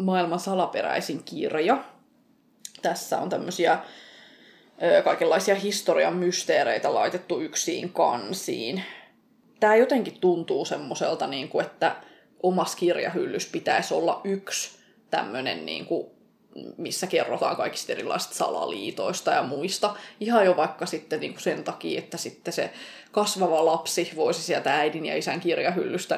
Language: English